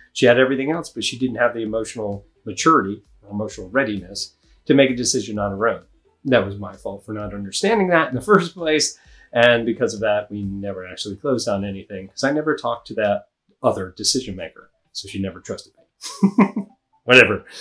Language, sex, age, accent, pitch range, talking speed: English, male, 30-49, American, 100-145 Hz, 200 wpm